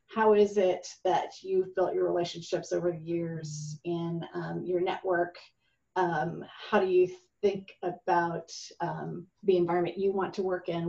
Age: 40-59